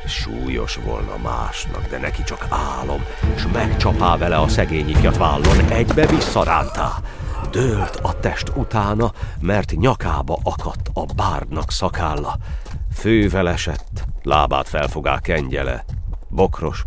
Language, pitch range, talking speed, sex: Hungarian, 80-105 Hz, 115 wpm, male